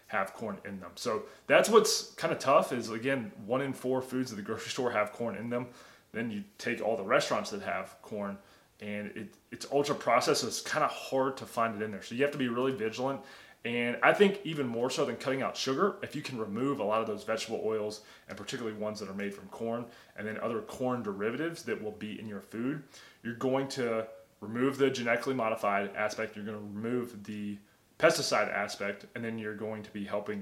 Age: 20-39